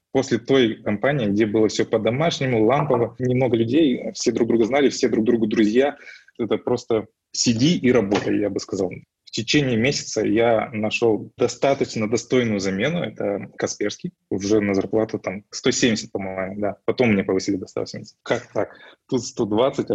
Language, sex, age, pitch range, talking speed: Russian, male, 20-39, 100-120 Hz, 155 wpm